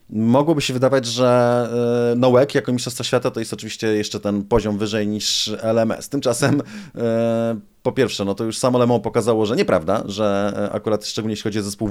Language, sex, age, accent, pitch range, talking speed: Polish, male, 30-49, native, 105-120 Hz, 175 wpm